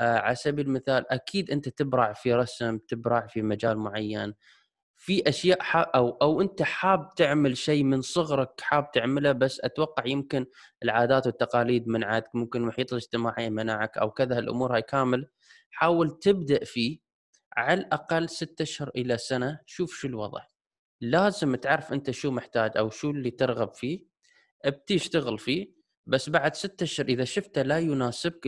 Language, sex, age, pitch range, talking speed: Arabic, male, 20-39, 115-150 Hz, 150 wpm